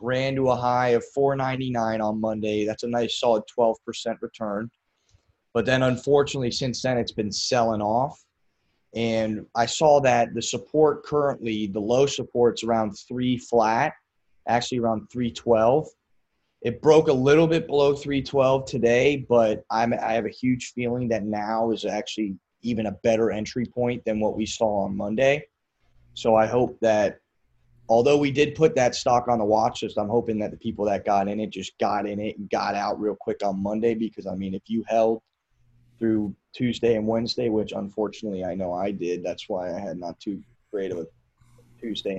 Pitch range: 105-125 Hz